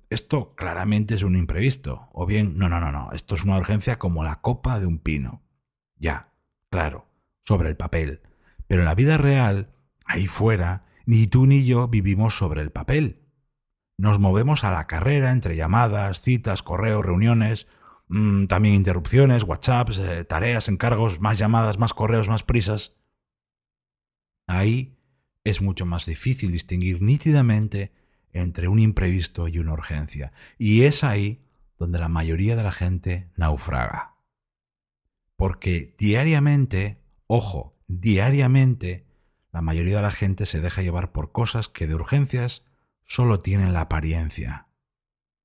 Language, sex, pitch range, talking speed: Spanish, male, 90-125 Hz, 140 wpm